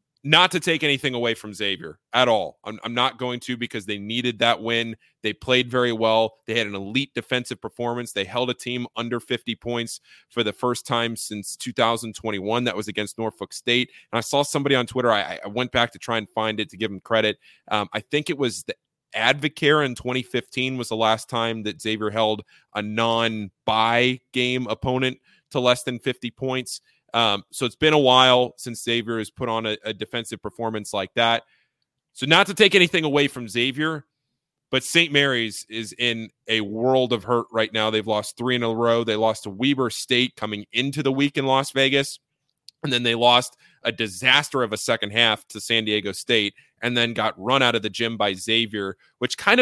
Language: English